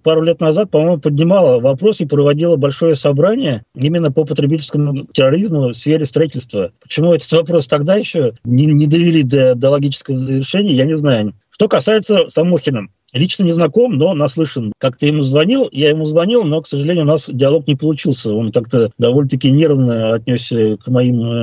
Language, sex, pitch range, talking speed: Russian, male, 145-215 Hz, 165 wpm